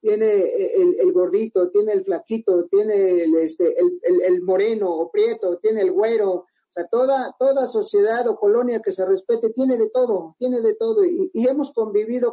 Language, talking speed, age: Spanish, 190 wpm, 40-59